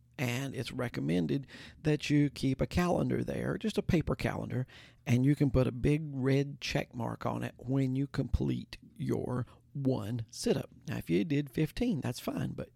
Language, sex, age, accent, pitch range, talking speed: English, male, 50-69, American, 120-140 Hz, 180 wpm